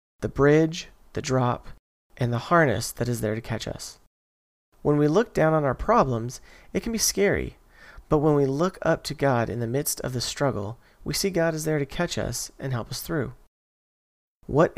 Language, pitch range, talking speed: English, 110-145 Hz, 205 wpm